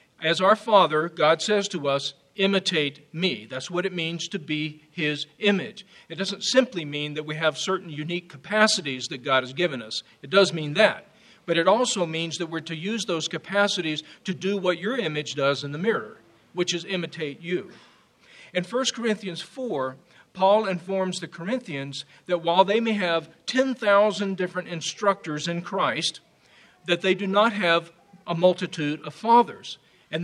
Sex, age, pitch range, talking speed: male, 50-69, 160-205 Hz, 175 wpm